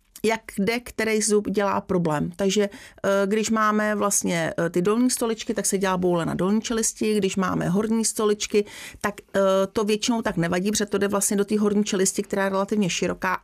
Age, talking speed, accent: 40-59, 185 wpm, native